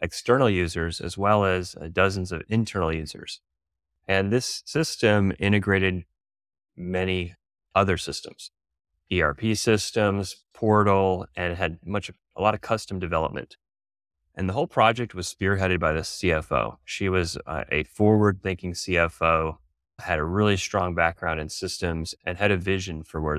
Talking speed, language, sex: 145 wpm, English, male